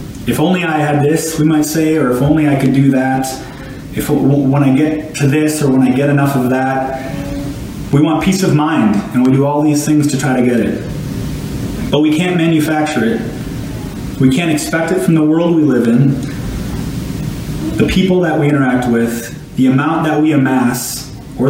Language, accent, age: English, American, 30-49